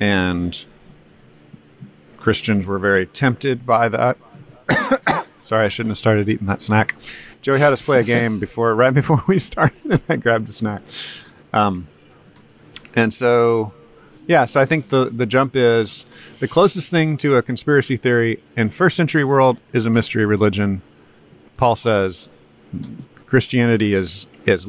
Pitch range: 100-125 Hz